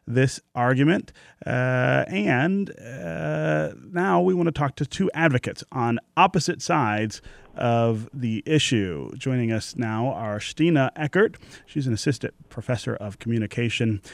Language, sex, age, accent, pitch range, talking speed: English, male, 30-49, American, 110-155 Hz, 130 wpm